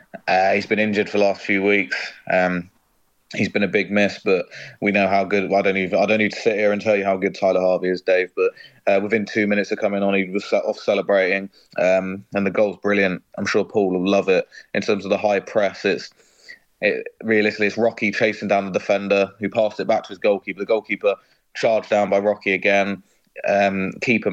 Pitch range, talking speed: 100-110 Hz, 225 wpm